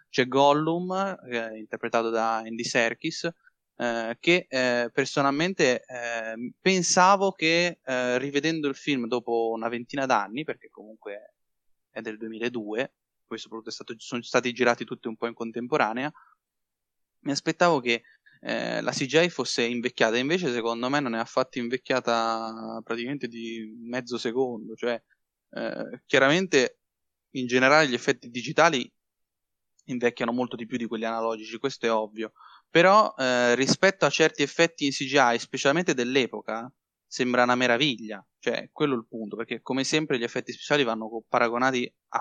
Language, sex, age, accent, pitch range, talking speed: Italian, male, 10-29, native, 115-140 Hz, 145 wpm